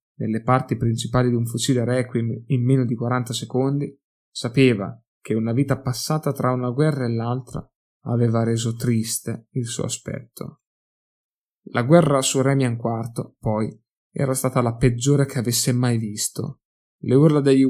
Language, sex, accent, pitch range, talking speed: Italian, male, native, 115-135 Hz, 155 wpm